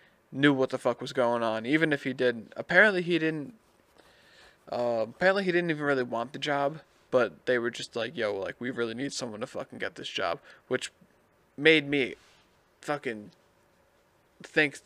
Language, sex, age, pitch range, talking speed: English, male, 20-39, 120-140 Hz, 180 wpm